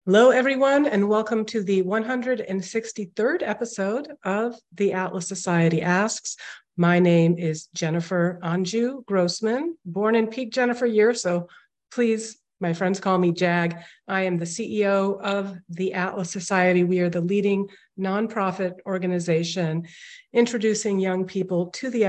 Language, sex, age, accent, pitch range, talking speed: English, female, 50-69, American, 170-205 Hz, 135 wpm